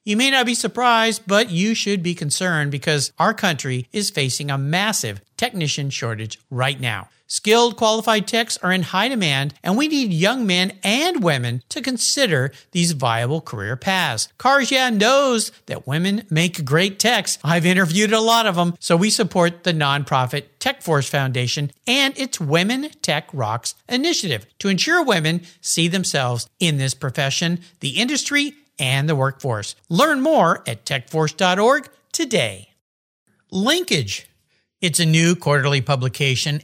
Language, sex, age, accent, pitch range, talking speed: English, male, 50-69, American, 140-215 Hz, 150 wpm